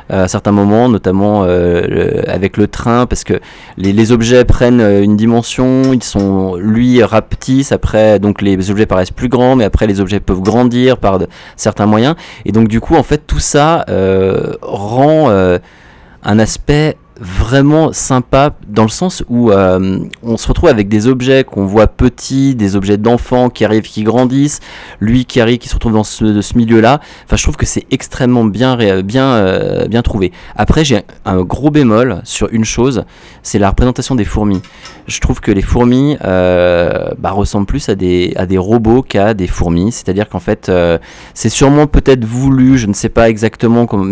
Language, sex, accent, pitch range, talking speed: French, male, French, 95-125 Hz, 195 wpm